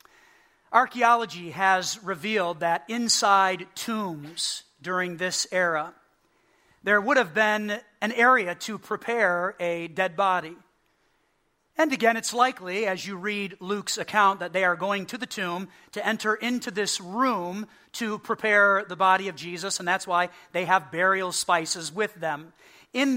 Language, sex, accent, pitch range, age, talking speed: English, male, American, 180-225 Hz, 40-59, 150 wpm